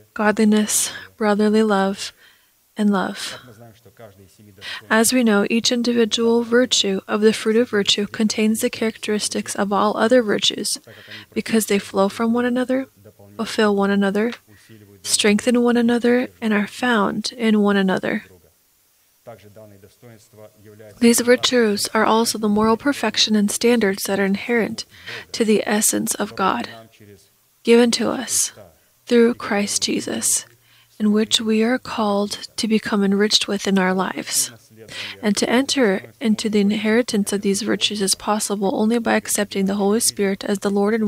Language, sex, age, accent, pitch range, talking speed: English, female, 20-39, American, 190-225 Hz, 140 wpm